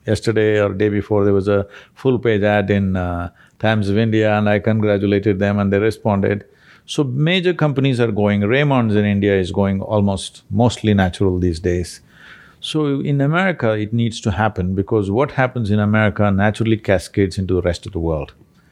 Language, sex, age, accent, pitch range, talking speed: English, male, 50-69, Indian, 100-115 Hz, 180 wpm